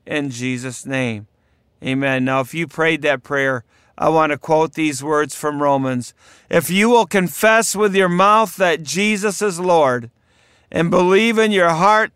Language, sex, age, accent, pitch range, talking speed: English, male, 50-69, American, 130-170 Hz, 170 wpm